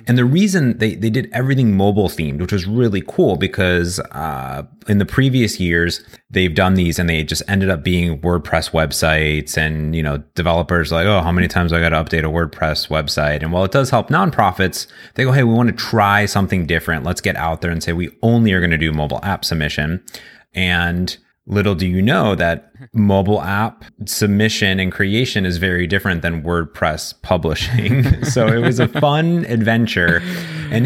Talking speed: 195 wpm